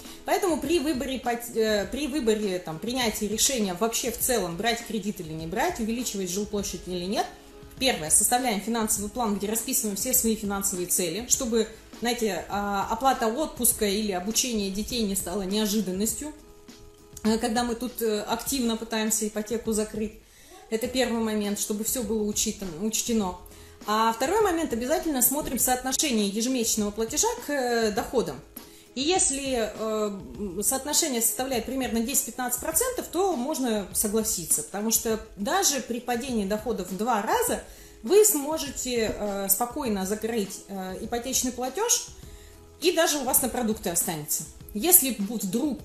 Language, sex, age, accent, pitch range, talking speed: Russian, female, 30-49, native, 205-255 Hz, 130 wpm